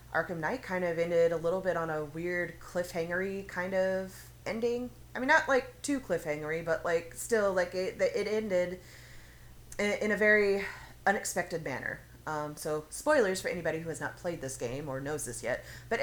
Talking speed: 185 wpm